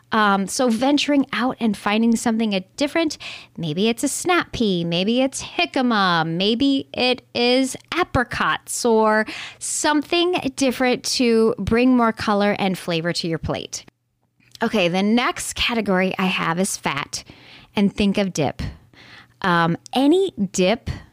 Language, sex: English, female